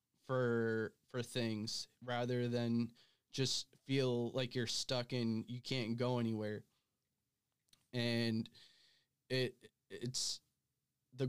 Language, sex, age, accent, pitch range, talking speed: English, male, 20-39, American, 120-135 Hz, 100 wpm